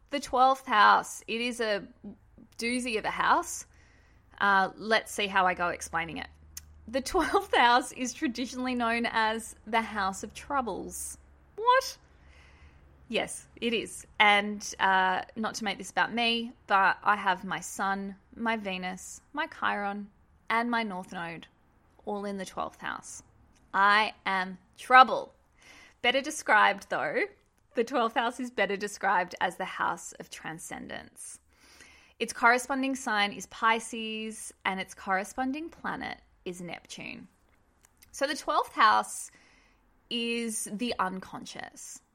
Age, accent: 20-39, Australian